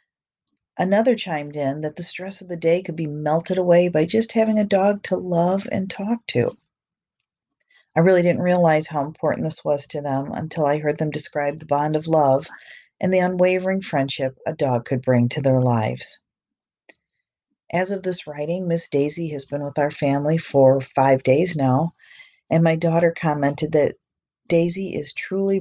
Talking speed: 180 wpm